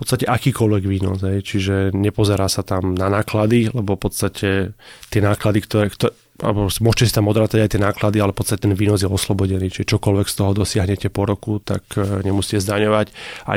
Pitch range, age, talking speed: 100-110 Hz, 30-49, 180 wpm